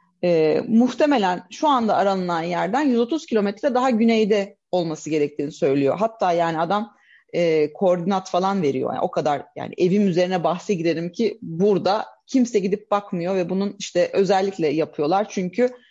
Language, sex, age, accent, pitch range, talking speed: Turkish, female, 30-49, native, 175-235 Hz, 145 wpm